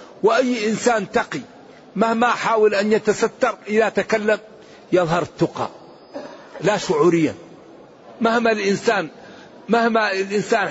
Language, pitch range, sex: Arabic, 175-225 Hz, male